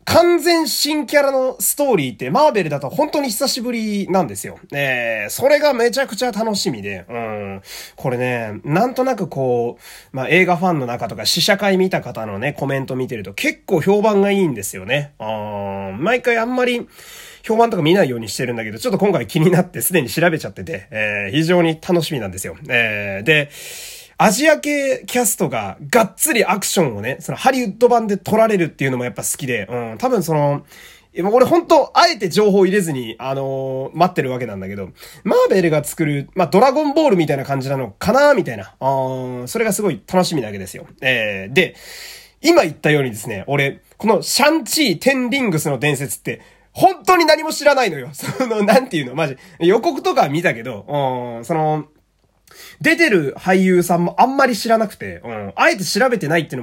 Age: 30-49